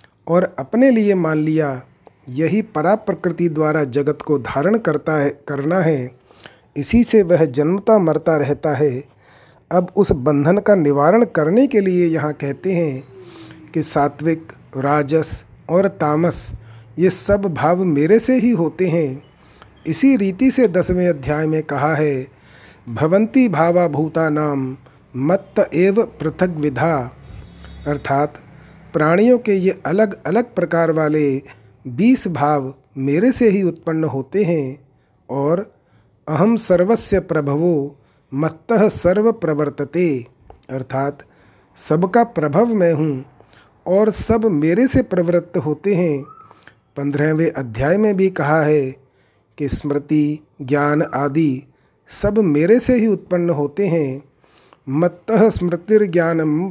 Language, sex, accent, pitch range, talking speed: Hindi, male, native, 145-185 Hz, 120 wpm